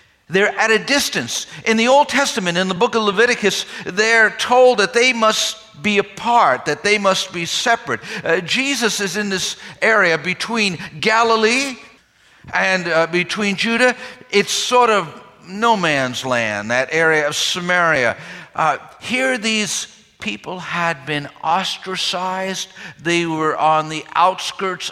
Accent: American